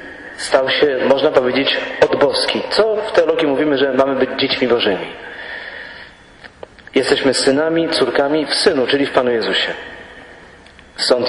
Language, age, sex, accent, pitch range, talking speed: English, 40-59, male, Polish, 130-160 Hz, 130 wpm